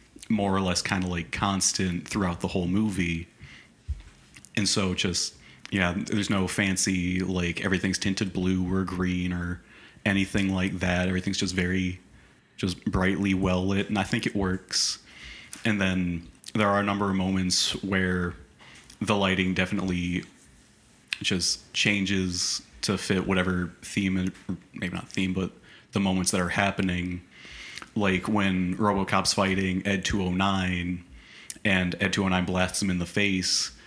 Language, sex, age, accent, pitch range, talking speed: English, male, 30-49, American, 90-95 Hz, 145 wpm